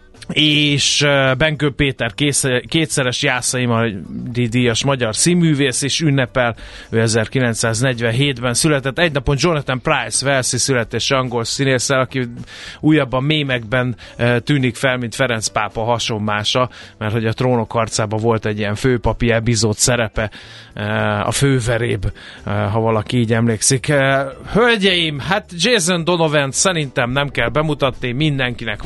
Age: 30-49